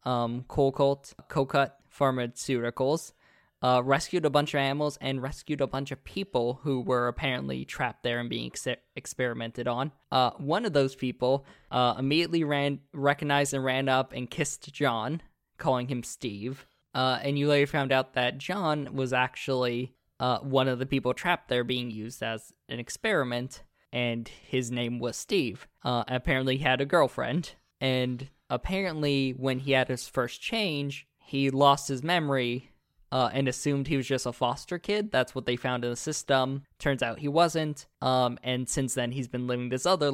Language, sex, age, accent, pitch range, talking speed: English, male, 10-29, American, 125-145 Hz, 180 wpm